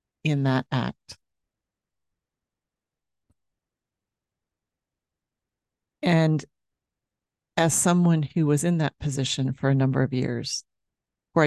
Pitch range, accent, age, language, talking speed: 135-155 Hz, American, 40-59, English, 90 wpm